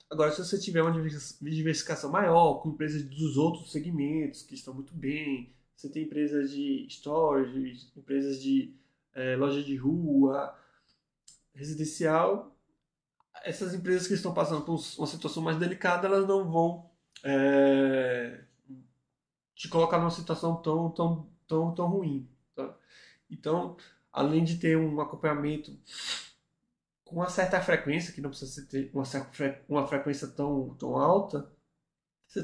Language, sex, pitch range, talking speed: Portuguese, male, 140-170 Hz, 130 wpm